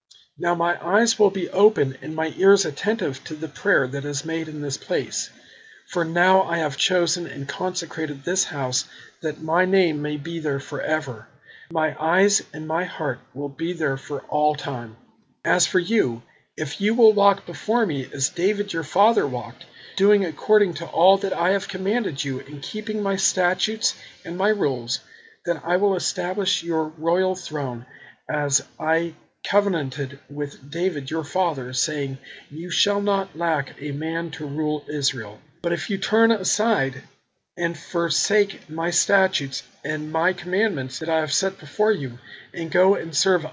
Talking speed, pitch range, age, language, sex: 170 wpm, 145-190 Hz, 40-59, English, male